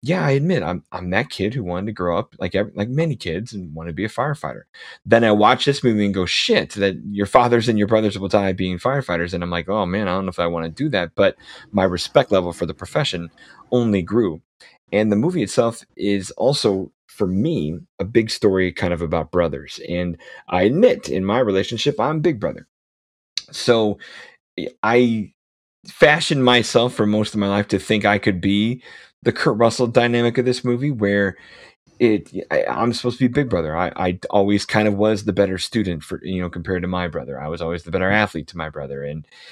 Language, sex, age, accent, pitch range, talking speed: English, male, 30-49, American, 90-115 Hz, 220 wpm